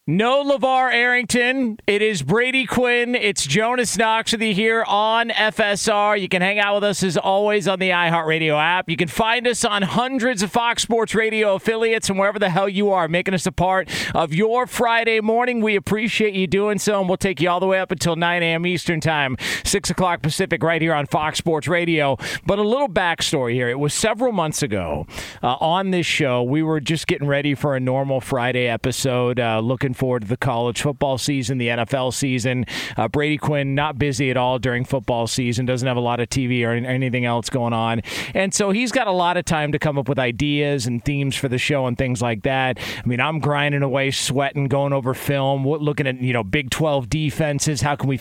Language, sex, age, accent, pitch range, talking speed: English, male, 40-59, American, 135-200 Hz, 220 wpm